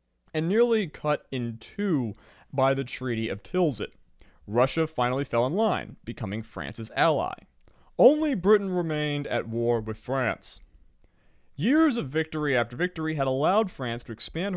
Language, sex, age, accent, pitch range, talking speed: English, male, 30-49, American, 115-170 Hz, 145 wpm